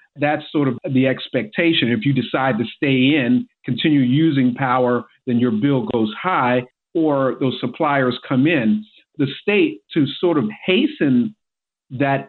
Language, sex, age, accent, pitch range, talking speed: English, male, 50-69, American, 130-180 Hz, 150 wpm